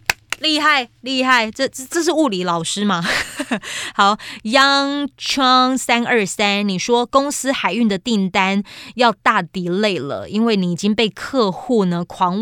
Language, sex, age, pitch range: Chinese, female, 20-39, 190-240 Hz